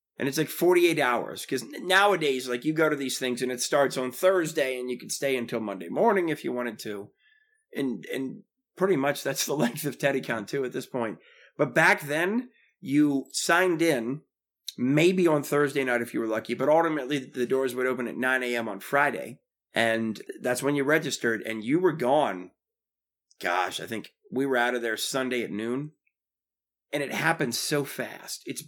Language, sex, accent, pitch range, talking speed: English, male, American, 120-150 Hz, 195 wpm